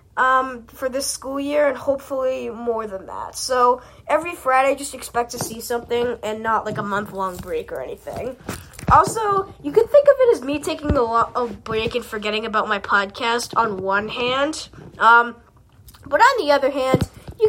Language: English